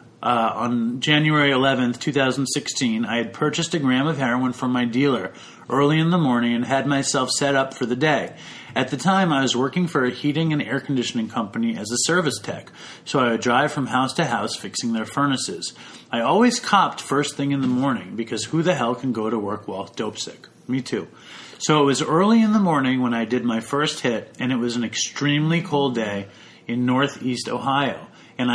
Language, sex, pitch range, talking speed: English, male, 120-150 Hz, 210 wpm